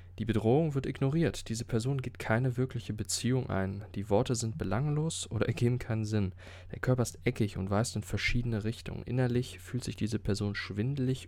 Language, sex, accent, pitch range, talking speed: German, male, German, 90-115 Hz, 180 wpm